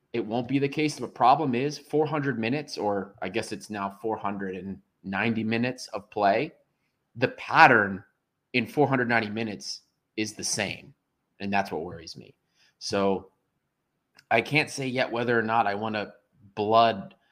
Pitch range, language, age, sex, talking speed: 100-125 Hz, English, 30-49, male, 155 wpm